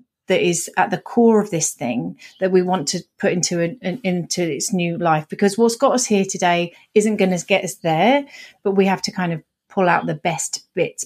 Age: 30-49